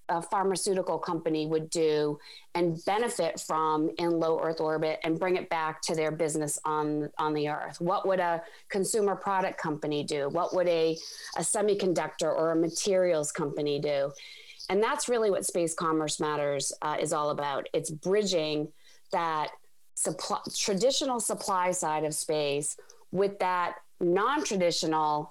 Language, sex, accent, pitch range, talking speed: English, female, American, 155-185 Hz, 145 wpm